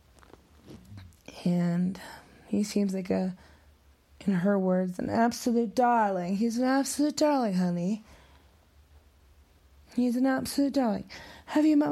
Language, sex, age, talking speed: English, female, 20-39, 115 wpm